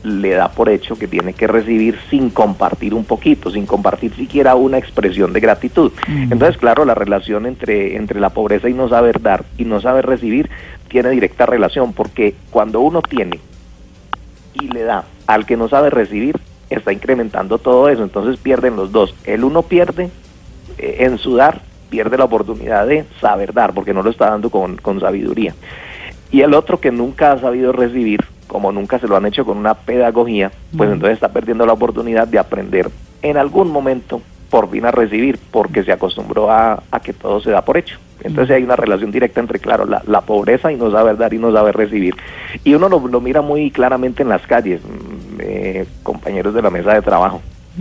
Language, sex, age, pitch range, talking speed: Spanish, male, 40-59, 105-130 Hz, 195 wpm